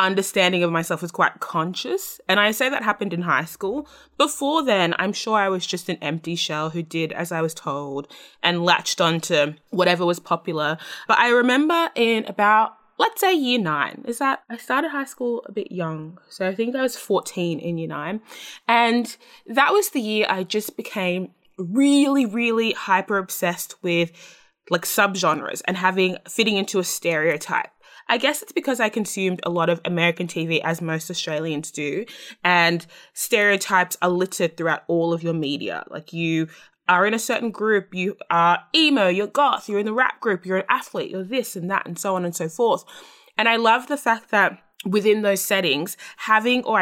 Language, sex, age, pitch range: English, female, 20-39, 170-230 Hz